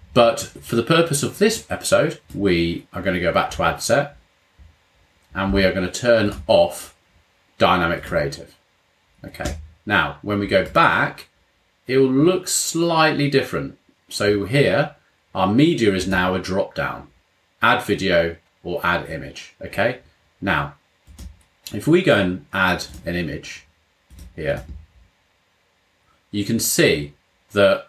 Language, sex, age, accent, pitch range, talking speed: English, male, 30-49, British, 85-110 Hz, 140 wpm